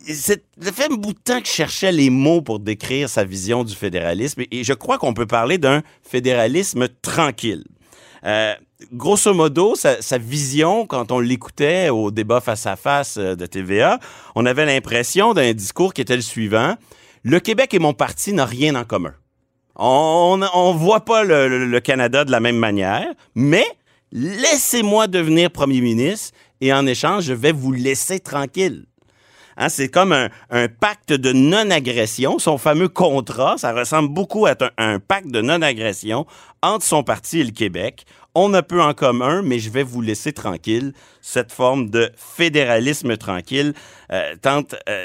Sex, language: male, French